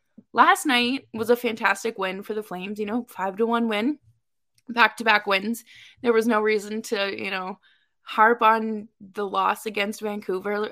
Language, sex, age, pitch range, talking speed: English, female, 20-39, 195-245 Hz, 170 wpm